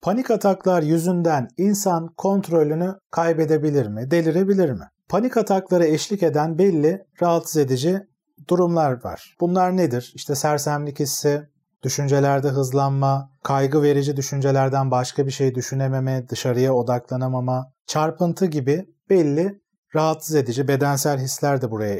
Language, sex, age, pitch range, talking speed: Turkish, male, 40-59, 135-170 Hz, 115 wpm